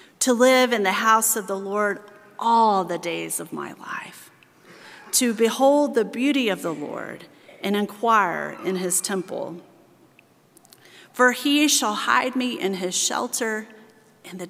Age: 40-59